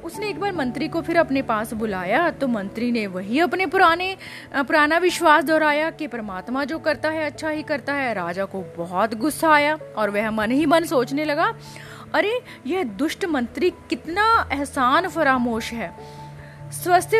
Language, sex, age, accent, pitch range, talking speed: Hindi, female, 30-49, native, 220-310 Hz, 165 wpm